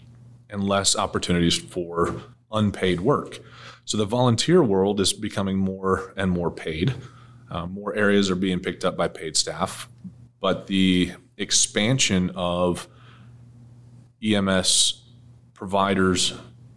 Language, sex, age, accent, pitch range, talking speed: English, male, 30-49, American, 95-120 Hz, 115 wpm